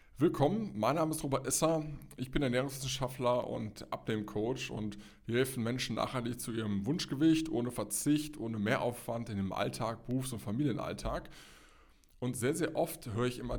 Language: German